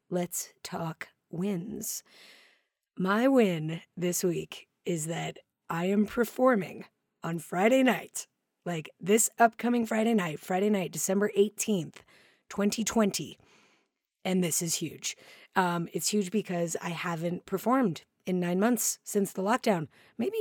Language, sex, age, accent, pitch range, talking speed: English, female, 30-49, American, 170-210 Hz, 125 wpm